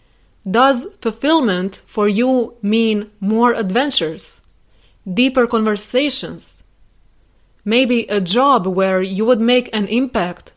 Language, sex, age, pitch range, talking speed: English, female, 20-39, 200-245 Hz, 100 wpm